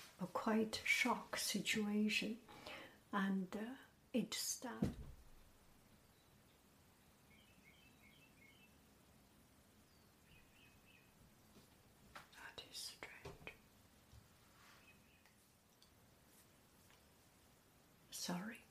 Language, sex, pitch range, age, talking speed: English, female, 185-220 Hz, 60-79, 40 wpm